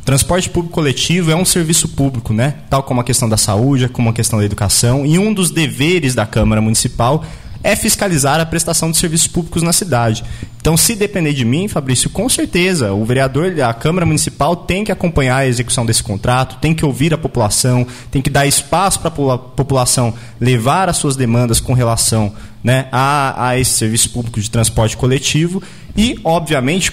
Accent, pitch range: Brazilian, 120-165 Hz